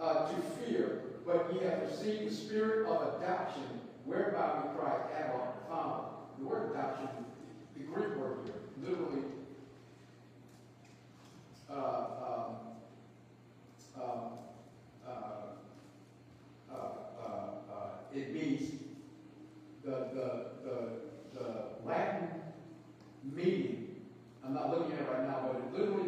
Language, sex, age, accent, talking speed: English, male, 50-69, American, 100 wpm